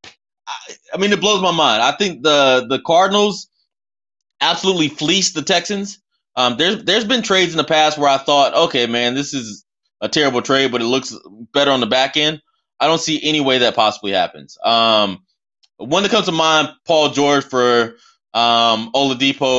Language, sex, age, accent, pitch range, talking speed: English, male, 20-39, American, 115-155 Hz, 185 wpm